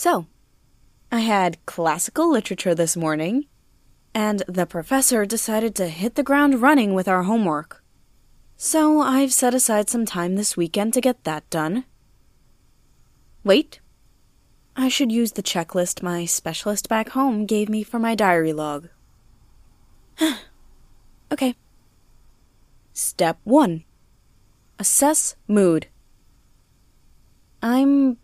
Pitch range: 170-250 Hz